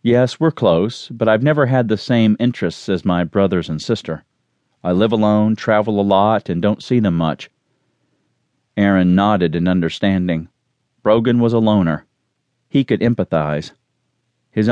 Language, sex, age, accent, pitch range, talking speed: English, male, 40-59, American, 90-110 Hz, 155 wpm